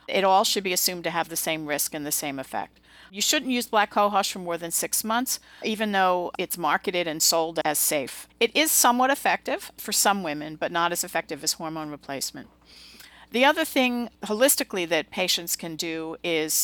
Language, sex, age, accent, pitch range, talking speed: English, female, 50-69, American, 155-205 Hz, 200 wpm